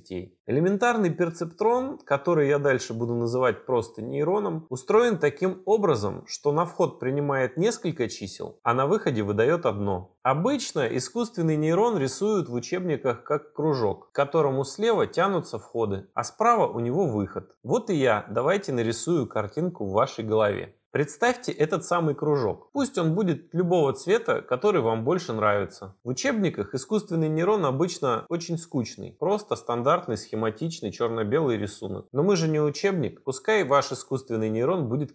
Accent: native